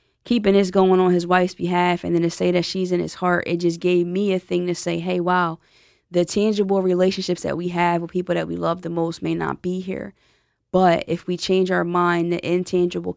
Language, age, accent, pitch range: English, 20-39, American, 160-185 Hz